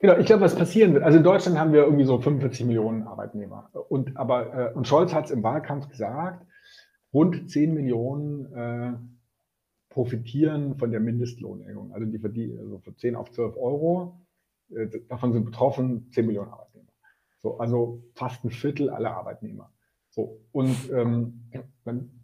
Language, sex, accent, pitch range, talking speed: German, male, German, 115-140 Hz, 155 wpm